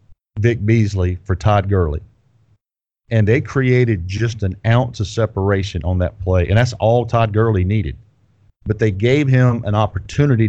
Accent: American